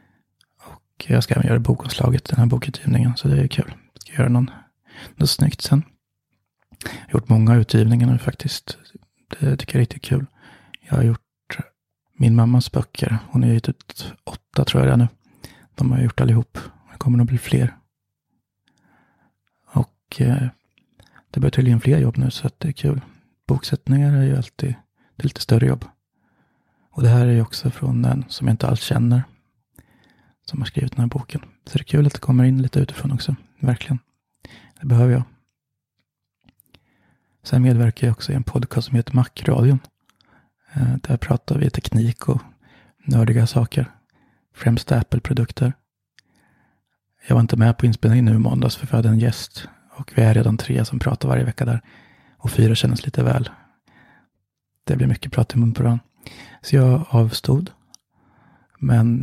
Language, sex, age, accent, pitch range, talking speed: Swedish, male, 30-49, native, 120-135 Hz, 175 wpm